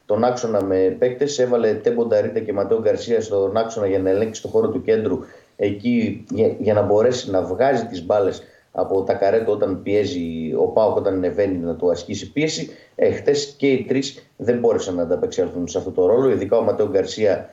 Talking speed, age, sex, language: 190 wpm, 30-49, male, Greek